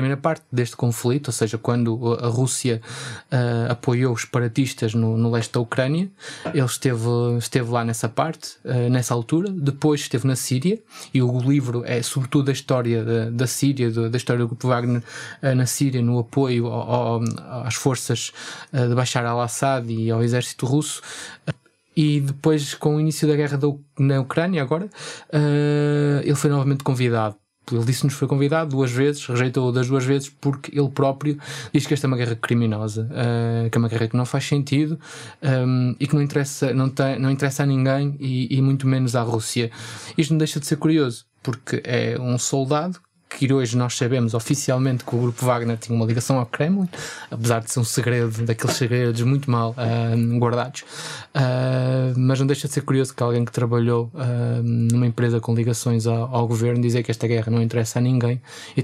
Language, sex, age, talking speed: Portuguese, male, 20-39, 180 wpm